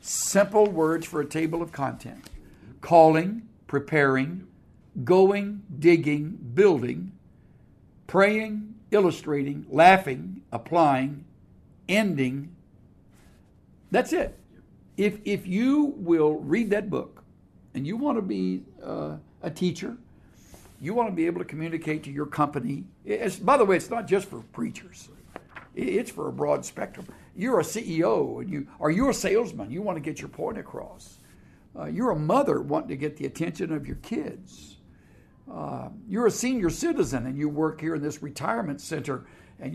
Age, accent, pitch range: 60-79, American, 140-200 Hz